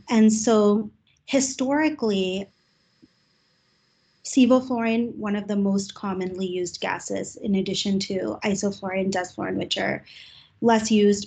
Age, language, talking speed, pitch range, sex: 20-39, English, 110 wpm, 190-215 Hz, female